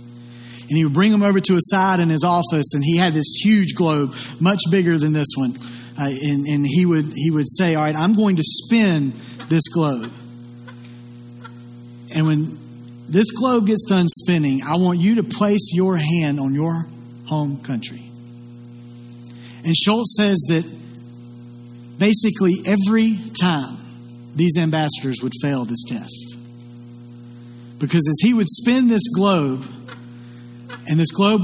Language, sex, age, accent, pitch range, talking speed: English, male, 40-59, American, 120-165 Hz, 150 wpm